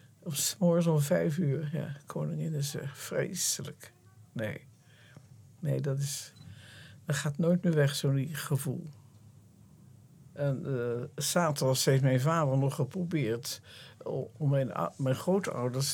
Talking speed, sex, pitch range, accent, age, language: 135 wpm, male, 125-150 Hz, Dutch, 60-79, Dutch